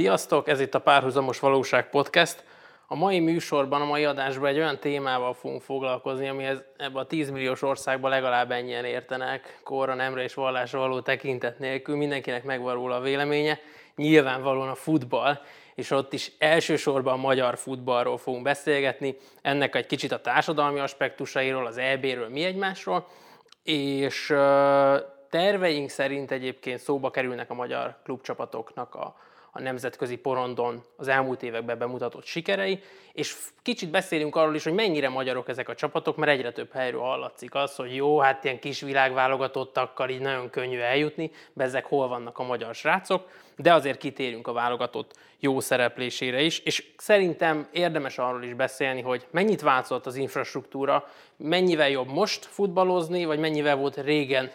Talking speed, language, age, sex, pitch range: 150 wpm, Hungarian, 20-39, male, 130-150 Hz